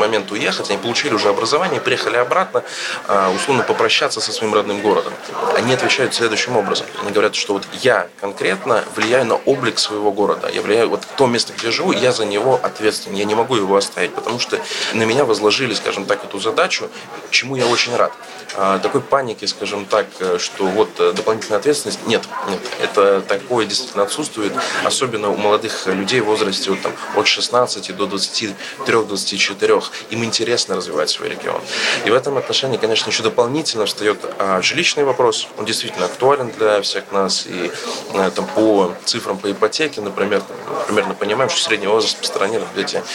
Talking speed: 170 wpm